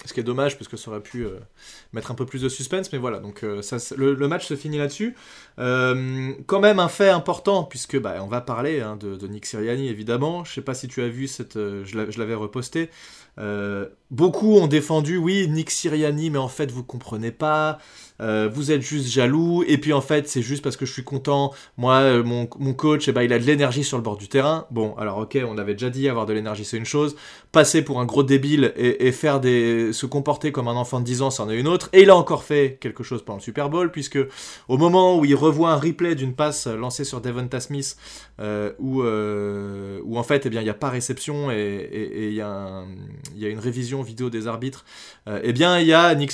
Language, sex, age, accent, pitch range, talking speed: French, male, 20-39, French, 120-150 Hz, 240 wpm